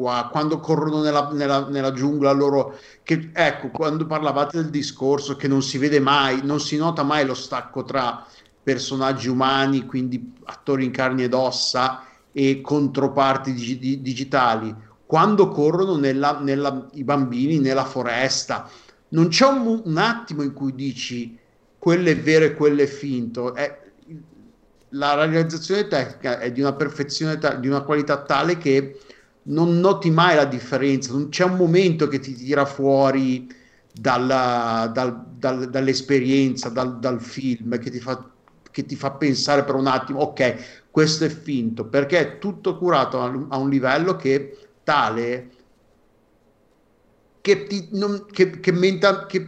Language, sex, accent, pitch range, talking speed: Italian, male, native, 130-160 Hz, 150 wpm